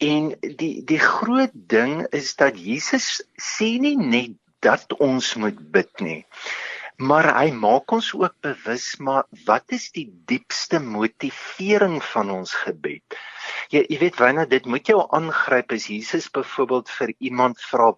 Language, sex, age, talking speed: English, male, 50-69, 150 wpm